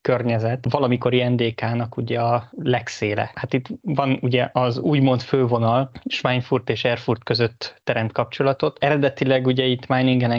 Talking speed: 135 wpm